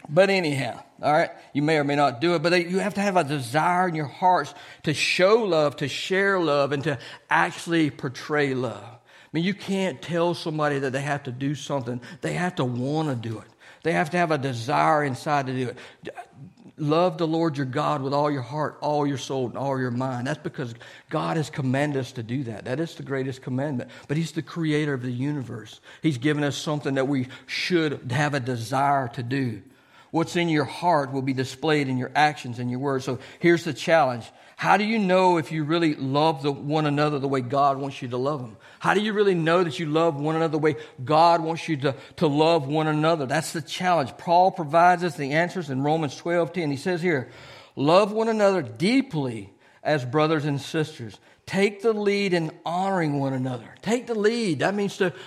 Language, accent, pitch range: English, American, 135-170 Hz